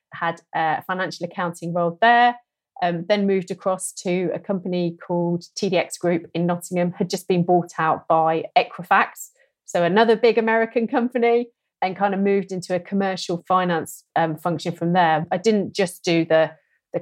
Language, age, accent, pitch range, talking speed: English, 30-49, British, 170-195 Hz, 170 wpm